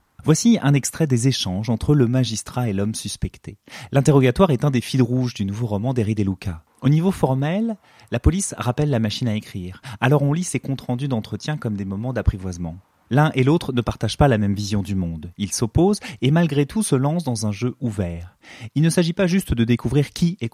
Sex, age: male, 30-49